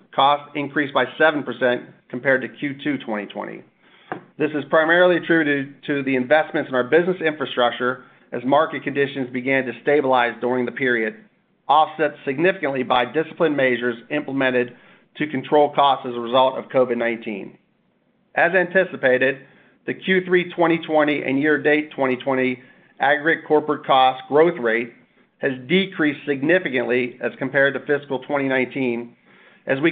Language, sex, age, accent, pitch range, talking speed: English, male, 40-59, American, 125-150 Hz, 130 wpm